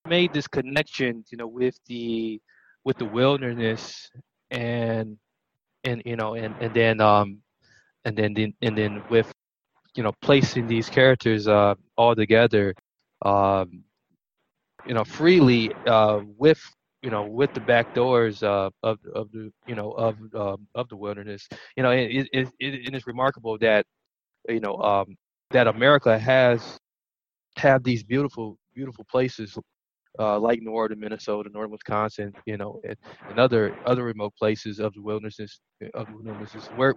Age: 20-39